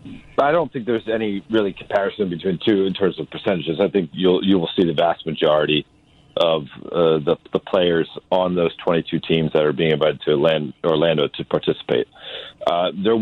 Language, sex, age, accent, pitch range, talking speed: English, male, 40-59, American, 90-120 Hz, 185 wpm